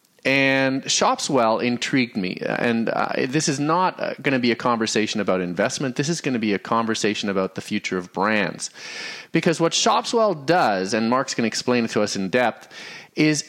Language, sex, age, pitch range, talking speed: English, male, 30-49, 115-170 Hz, 195 wpm